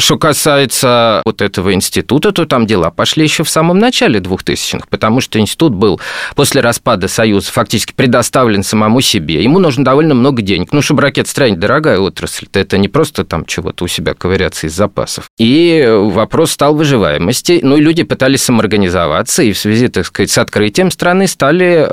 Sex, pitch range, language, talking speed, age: male, 100-145 Hz, Russian, 180 wpm, 20-39